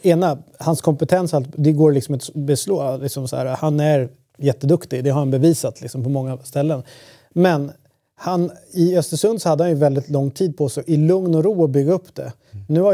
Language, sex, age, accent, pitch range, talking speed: Swedish, male, 30-49, native, 140-165 Hz, 180 wpm